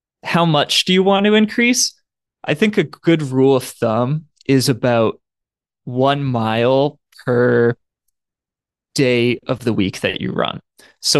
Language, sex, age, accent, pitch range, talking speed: English, male, 20-39, American, 120-155 Hz, 145 wpm